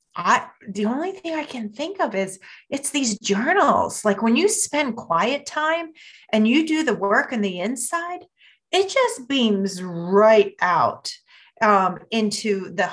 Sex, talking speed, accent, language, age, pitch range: female, 160 wpm, American, English, 30-49, 190-265 Hz